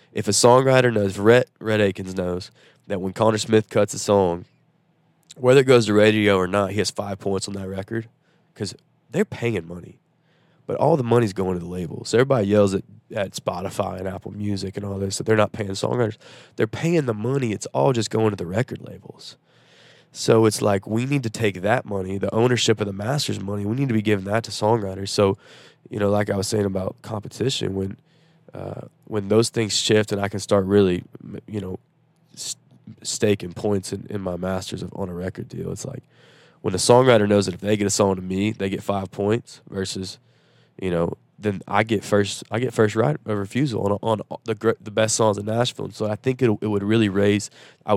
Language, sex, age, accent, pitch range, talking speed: English, male, 20-39, American, 100-120 Hz, 215 wpm